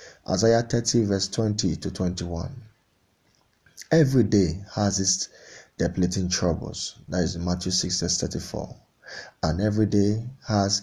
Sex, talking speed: male, 125 wpm